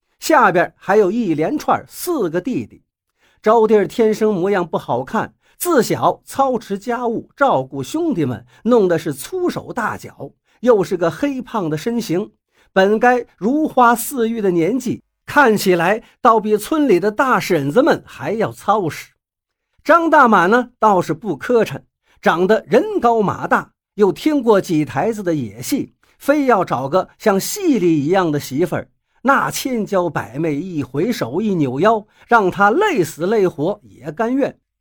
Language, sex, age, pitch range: Chinese, male, 50-69, 175-245 Hz